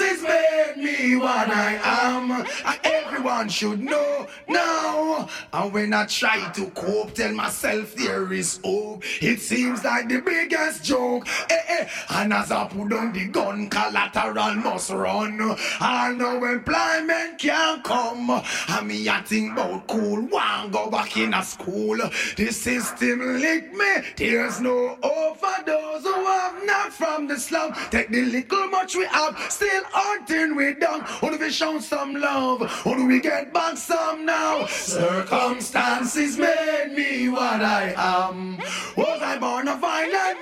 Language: English